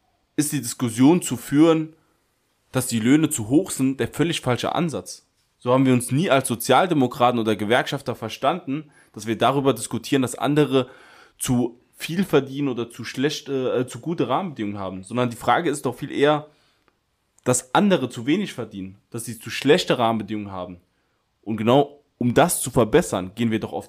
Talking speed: 175 wpm